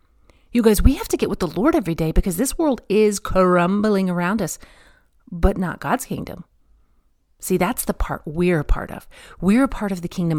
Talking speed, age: 210 wpm, 40-59